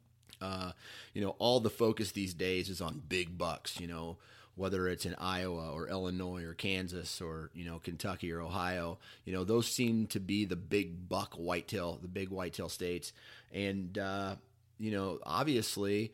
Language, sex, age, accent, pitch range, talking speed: English, male, 30-49, American, 95-110 Hz, 175 wpm